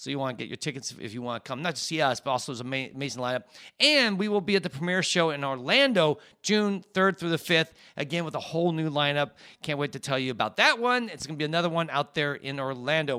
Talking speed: 280 wpm